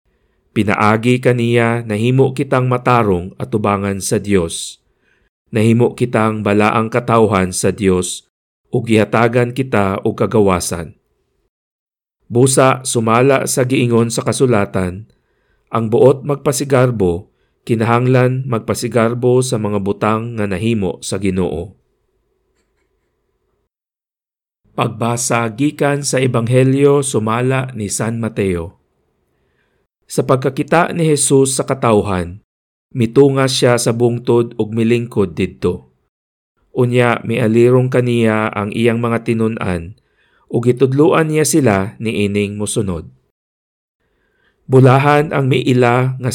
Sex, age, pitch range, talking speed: male, 50-69, 105-130 Hz, 100 wpm